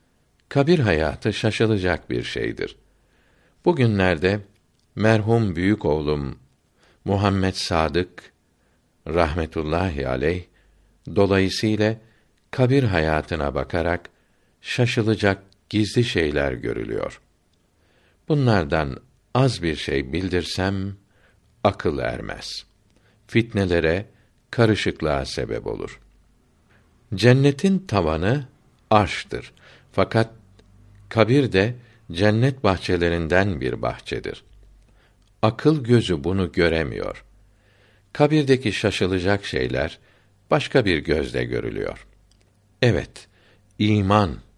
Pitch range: 85-110 Hz